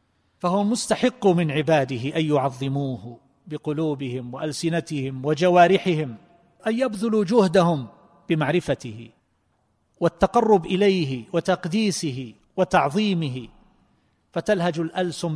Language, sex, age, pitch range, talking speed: Arabic, male, 40-59, 140-180 Hz, 75 wpm